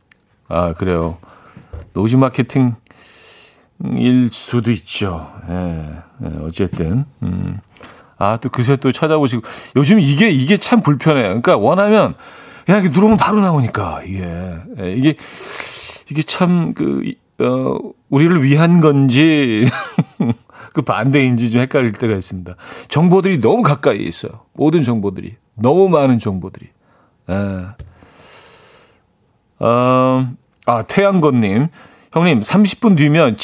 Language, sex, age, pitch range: Korean, male, 40-59, 105-145 Hz